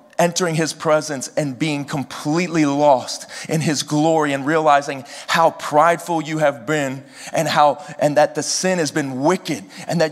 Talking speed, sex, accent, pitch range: 165 wpm, male, American, 140-165 Hz